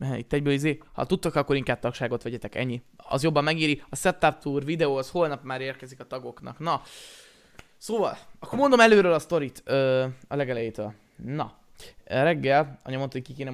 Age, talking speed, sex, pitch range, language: 20-39, 175 wpm, male, 130-160 Hz, Hungarian